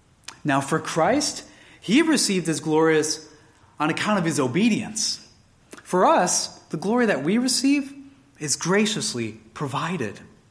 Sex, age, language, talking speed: male, 30-49, Indonesian, 125 wpm